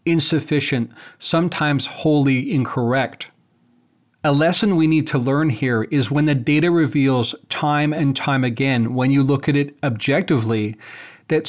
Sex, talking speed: male, 140 wpm